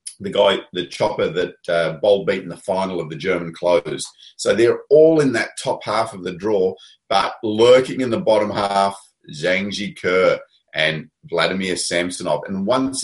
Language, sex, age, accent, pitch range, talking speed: English, male, 30-49, Australian, 90-130 Hz, 175 wpm